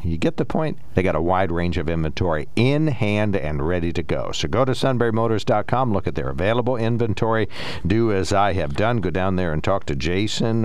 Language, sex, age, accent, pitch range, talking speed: English, male, 60-79, American, 80-105 Hz, 215 wpm